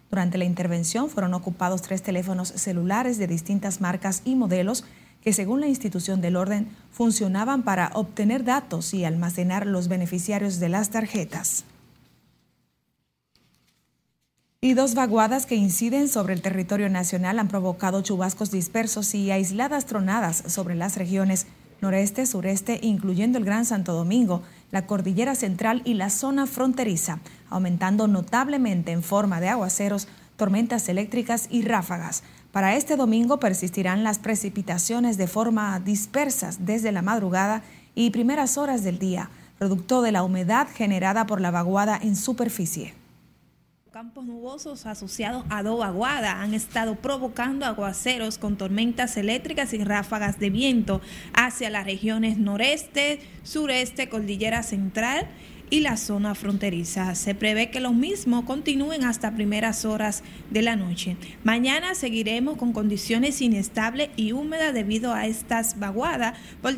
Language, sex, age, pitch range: Spanish, female, 30-49, 190-240 Hz